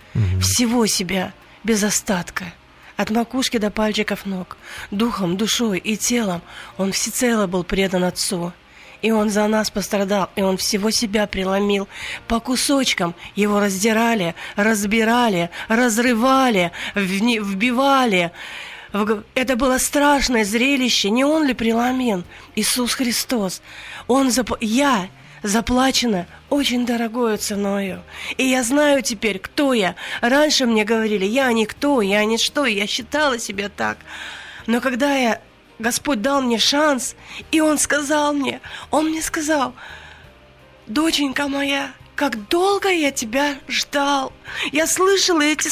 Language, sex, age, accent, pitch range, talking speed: Russian, female, 30-49, native, 210-285 Hz, 125 wpm